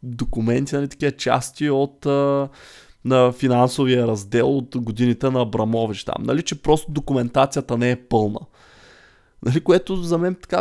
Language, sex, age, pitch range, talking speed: Bulgarian, male, 20-39, 120-165 Hz, 145 wpm